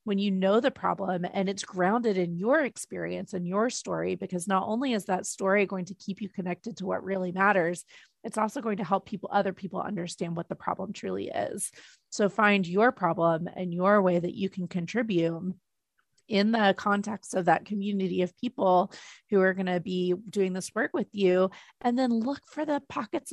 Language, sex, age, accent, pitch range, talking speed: English, female, 30-49, American, 180-210 Hz, 200 wpm